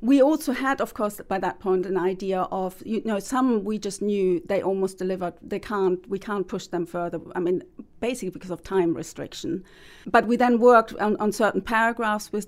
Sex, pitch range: female, 185-220 Hz